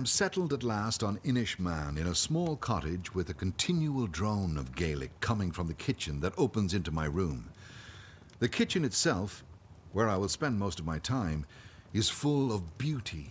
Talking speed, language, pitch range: 190 wpm, English, 85-120 Hz